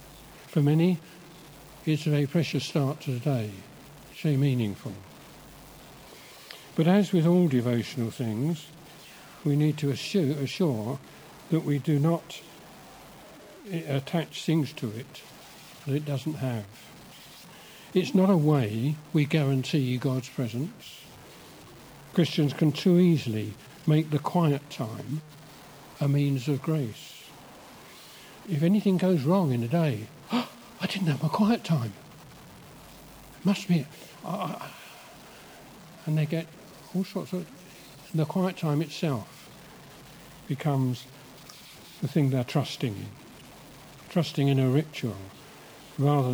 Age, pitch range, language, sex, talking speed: 60-79, 135-165 Hz, English, male, 125 wpm